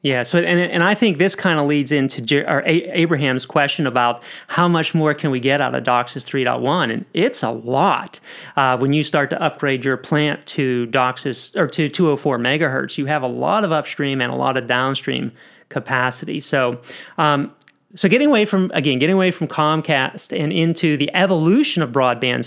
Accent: American